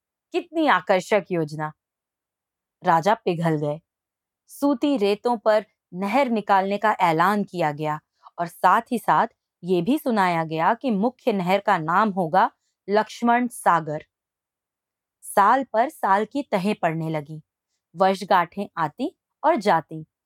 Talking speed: 125 wpm